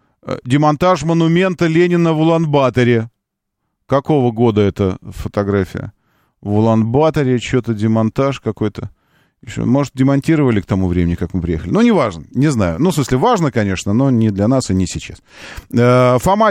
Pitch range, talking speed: 100-140 Hz, 150 wpm